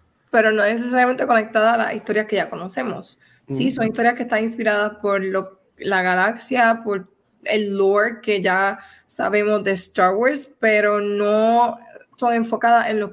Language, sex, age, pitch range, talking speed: Spanish, female, 20-39, 200-235 Hz, 165 wpm